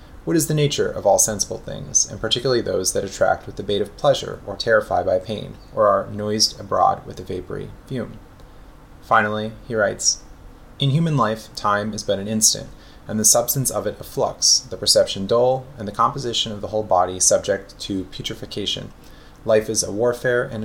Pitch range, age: 100-120 Hz, 30-49